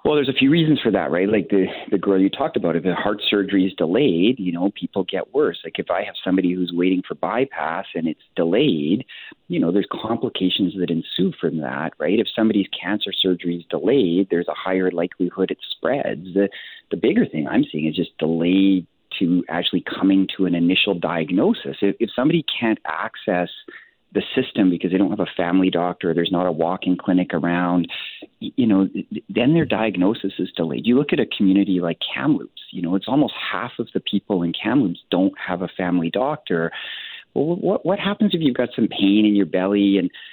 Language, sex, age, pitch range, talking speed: English, male, 40-59, 90-105 Hz, 205 wpm